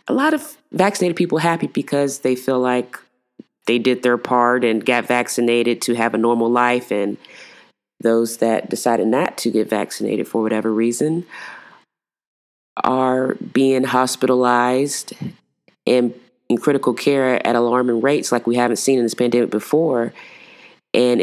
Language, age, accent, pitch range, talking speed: English, 20-39, American, 120-150 Hz, 145 wpm